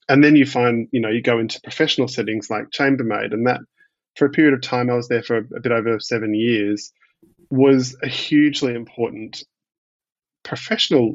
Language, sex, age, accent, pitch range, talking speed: English, male, 20-39, Australian, 110-125 Hz, 185 wpm